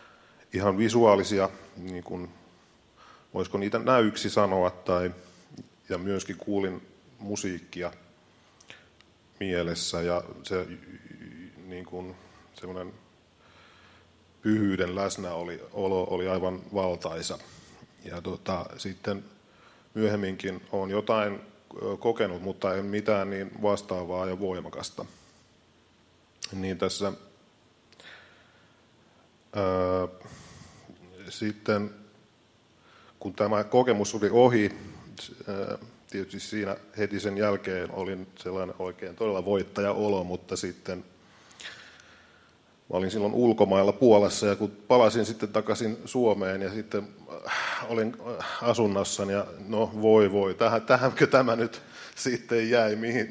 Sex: male